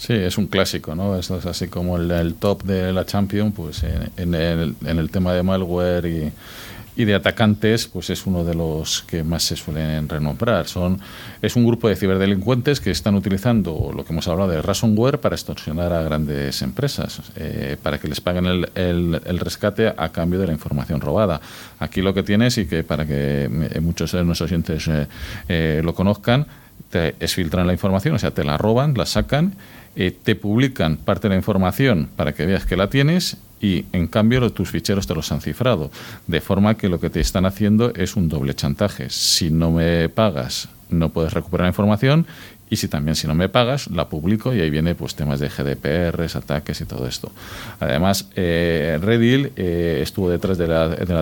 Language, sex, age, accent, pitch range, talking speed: Spanish, male, 40-59, Spanish, 80-105 Hz, 205 wpm